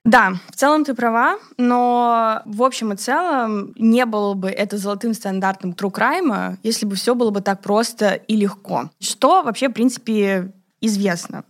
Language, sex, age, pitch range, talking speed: Russian, female, 20-39, 190-240 Hz, 160 wpm